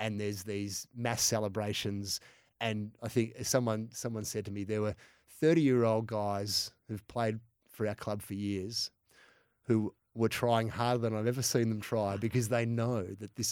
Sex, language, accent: male, English, Australian